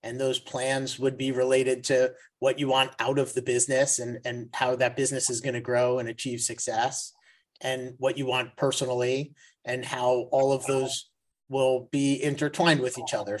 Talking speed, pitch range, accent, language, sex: 185 wpm, 125-145 Hz, American, English, male